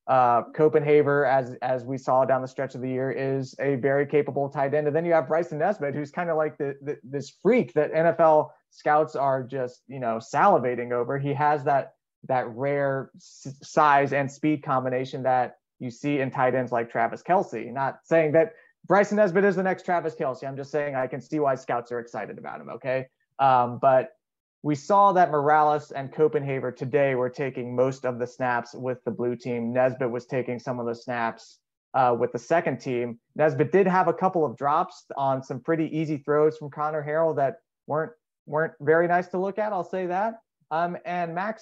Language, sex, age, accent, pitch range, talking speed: English, male, 30-49, American, 130-160 Hz, 205 wpm